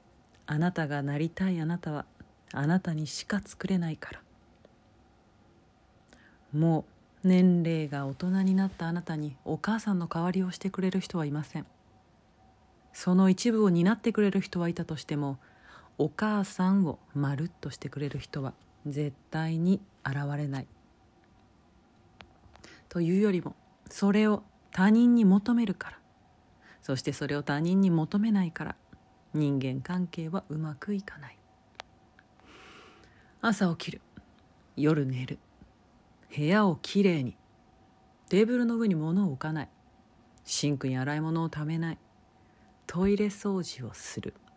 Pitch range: 135-190 Hz